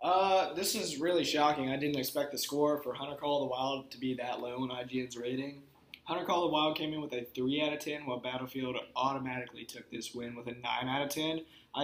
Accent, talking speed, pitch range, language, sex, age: American, 250 wpm, 130-155 Hz, English, male, 20-39